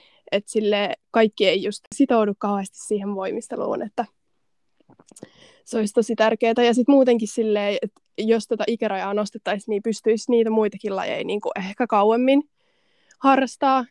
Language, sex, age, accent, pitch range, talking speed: Finnish, female, 20-39, native, 205-230 Hz, 130 wpm